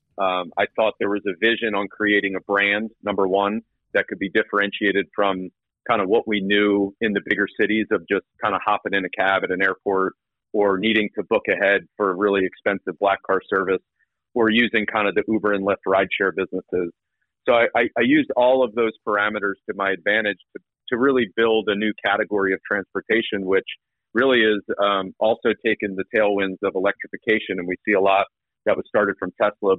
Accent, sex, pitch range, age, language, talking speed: American, male, 95-110 Hz, 40-59, English, 200 wpm